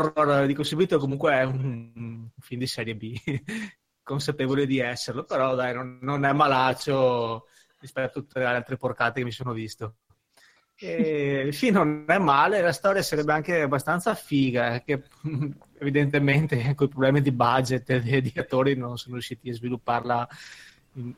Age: 20-39